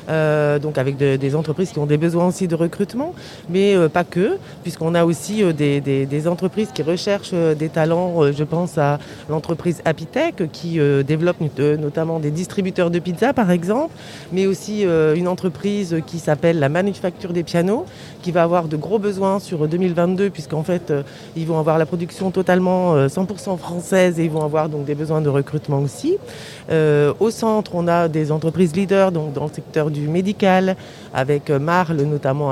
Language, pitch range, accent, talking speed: French, 150-185 Hz, French, 195 wpm